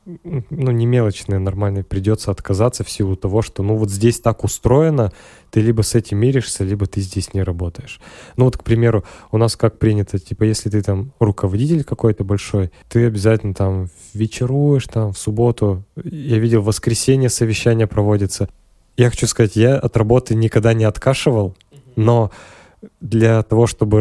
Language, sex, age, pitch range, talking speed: Russian, male, 20-39, 100-115 Hz, 165 wpm